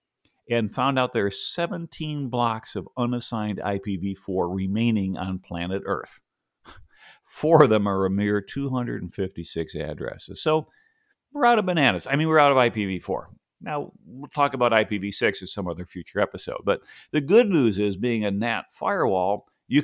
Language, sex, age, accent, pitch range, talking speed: English, male, 50-69, American, 100-140 Hz, 160 wpm